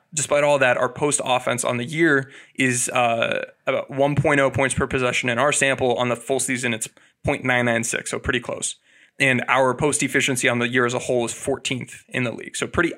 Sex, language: male, English